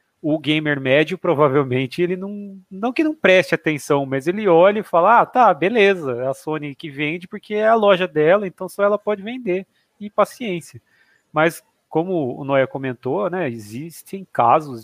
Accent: Brazilian